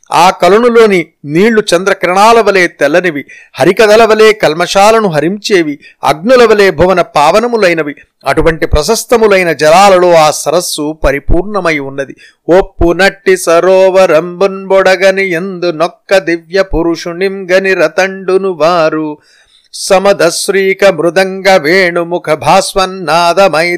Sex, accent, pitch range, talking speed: male, native, 165-195 Hz, 85 wpm